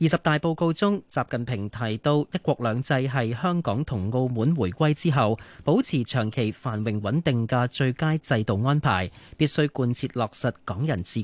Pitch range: 115-155 Hz